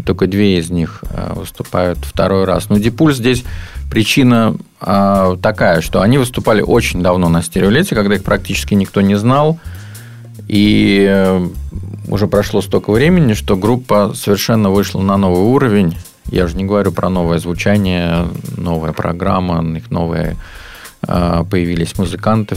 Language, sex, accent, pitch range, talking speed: Russian, male, native, 90-110 Hz, 140 wpm